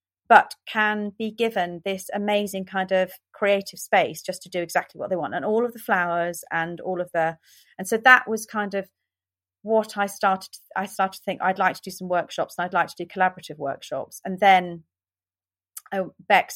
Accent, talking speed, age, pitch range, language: British, 200 wpm, 30-49, 155-185 Hz, English